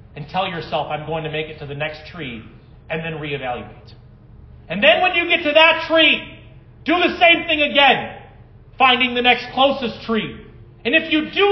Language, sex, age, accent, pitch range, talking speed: English, male, 40-59, American, 170-250 Hz, 195 wpm